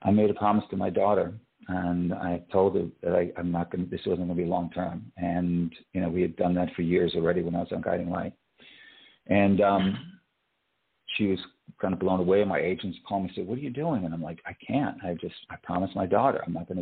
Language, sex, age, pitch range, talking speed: English, male, 50-69, 90-115 Hz, 250 wpm